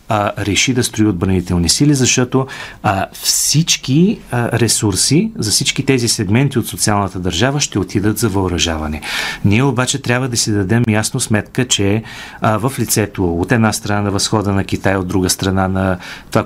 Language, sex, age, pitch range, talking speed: Bulgarian, male, 40-59, 95-125 Hz, 155 wpm